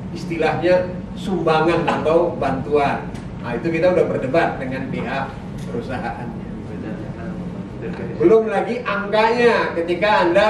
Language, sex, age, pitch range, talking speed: Indonesian, male, 40-59, 160-190 Hz, 95 wpm